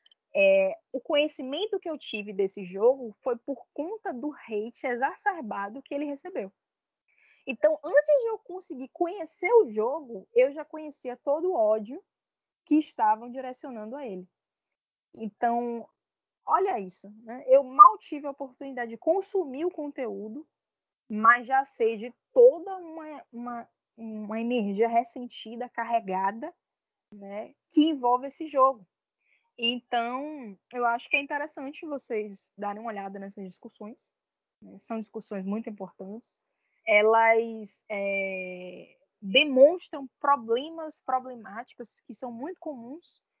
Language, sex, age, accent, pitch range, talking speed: Portuguese, female, 10-29, Brazilian, 225-305 Hz, 125 wpm